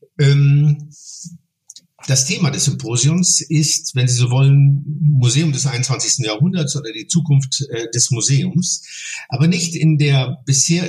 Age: 50-69